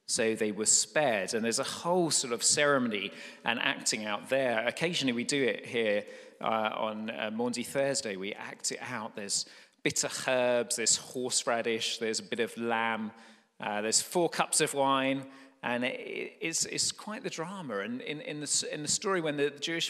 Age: 30-49